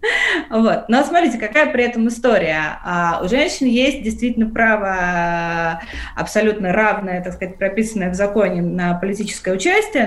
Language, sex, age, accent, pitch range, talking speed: Russian, female, 20-39, native, 190-235 Hz, 130 wpm